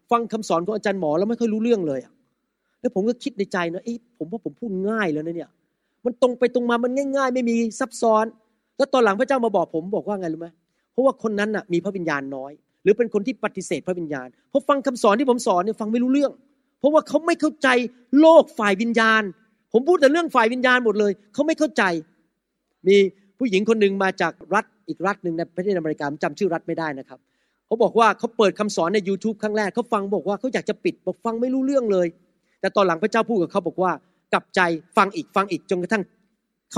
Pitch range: 185-245 Hz